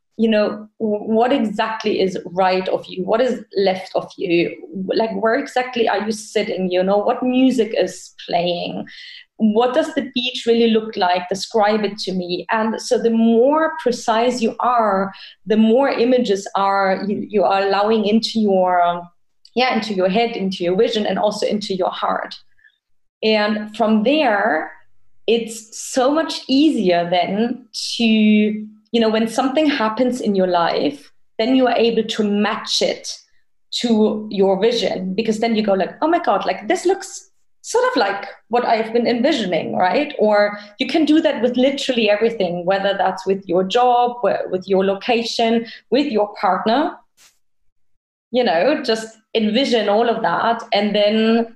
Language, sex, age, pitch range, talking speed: English, female, 30-49, 195-240 Hz, 160 wpm